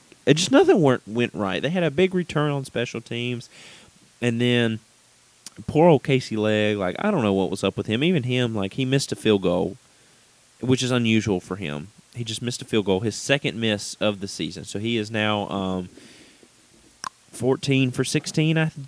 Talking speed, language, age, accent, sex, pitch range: 195 wpm, English, 30-49, American, male, 100-135 Hz